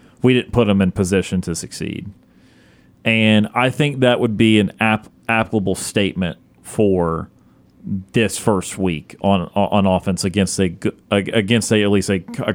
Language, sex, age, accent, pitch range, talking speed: English, male, 30-49, American, 95-110 Hz, 160 wpm